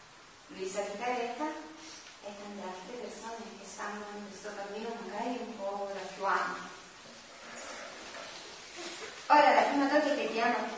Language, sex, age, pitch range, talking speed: Italian, female, 30-49, 195-240 Hz, 145 wpm